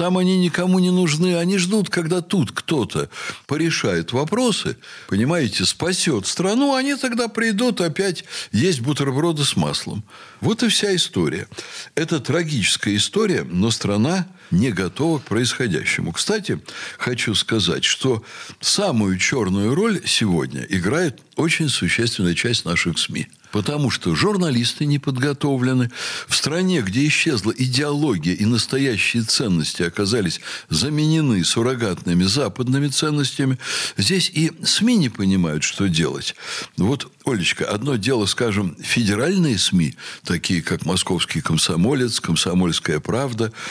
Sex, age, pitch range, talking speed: male, 60-79, 115-175 Hz, 120 wpm